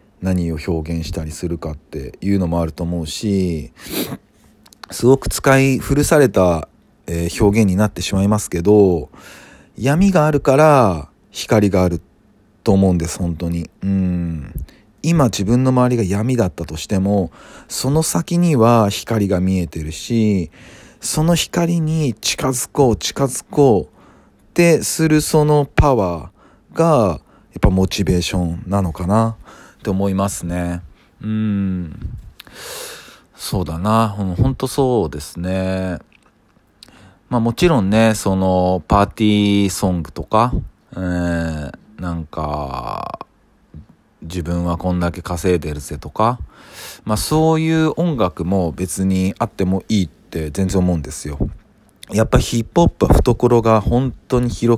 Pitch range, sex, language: 85-115 Hz, male, Japanese